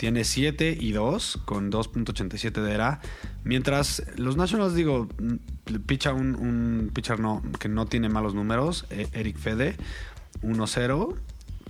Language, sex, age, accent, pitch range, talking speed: Spanish, male, 20-39, Mexican, 100-120 Hz, 130 wpm